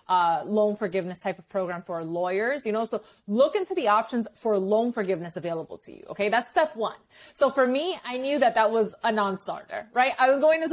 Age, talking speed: 30-49, 230 wpm